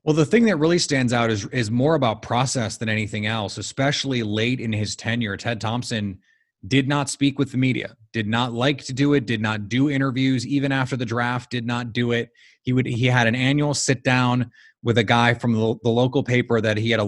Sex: male